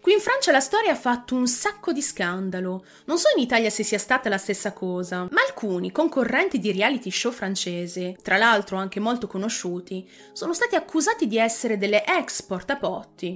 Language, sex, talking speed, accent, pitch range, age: Italian, female, 185 wpm, native, 200-295 Hz, 30-49